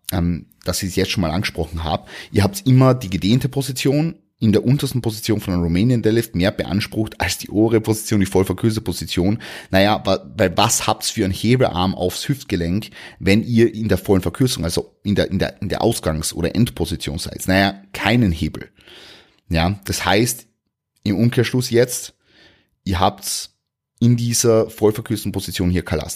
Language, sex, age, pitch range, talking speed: German, male, 30-49, 90-115 Hz, 175 wpm